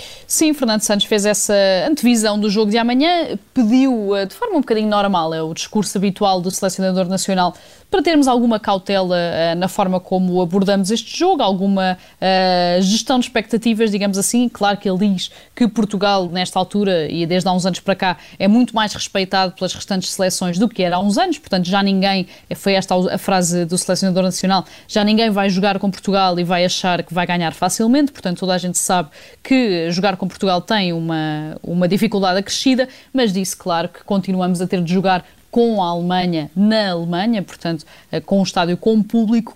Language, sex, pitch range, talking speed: Portuguese, female, 185-220 Hz, 190 wpm